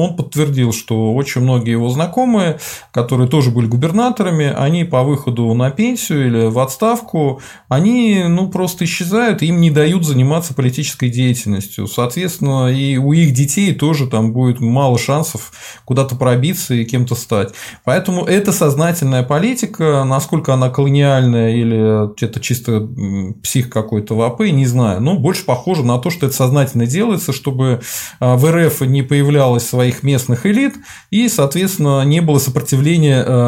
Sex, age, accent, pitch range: male, 20-39, native, 125-165 Hz